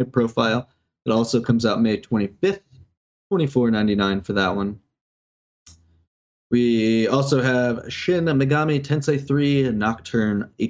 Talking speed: 105 wpm